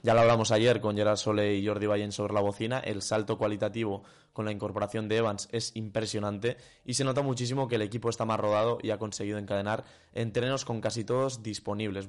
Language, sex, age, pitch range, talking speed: Spanish, male, 20-39, 105-115 Hz, 210 wpm